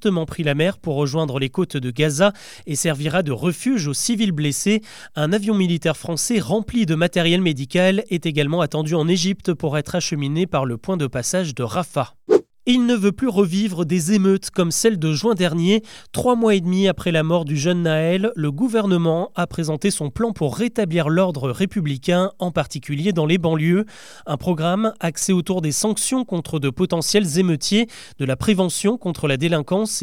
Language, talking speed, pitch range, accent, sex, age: French, 185 wpm, 150-200 Hz, French, male, 30-49